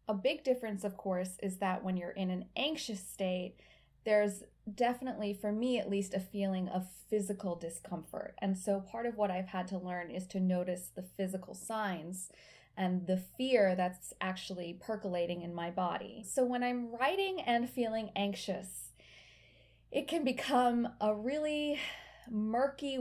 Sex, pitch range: female, 185-235 Hz